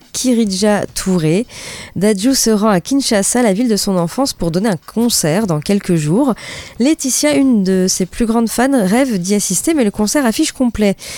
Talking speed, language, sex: 185 wpm, French, female